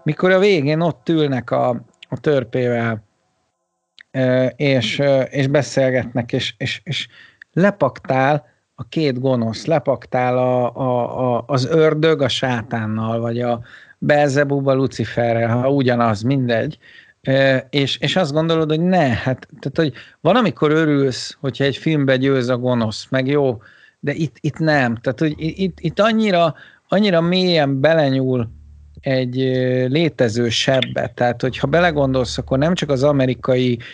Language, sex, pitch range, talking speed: Hungarian, male, 125-155 Hz, 135 wpm